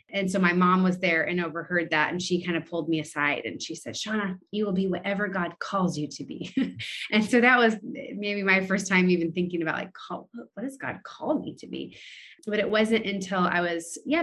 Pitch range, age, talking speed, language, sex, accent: 165-200 Hz, 30-49, 230 wpm, English, female, American